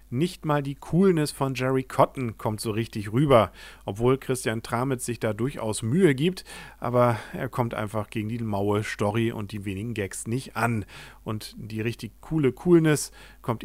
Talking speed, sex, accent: 170 wpm, male, German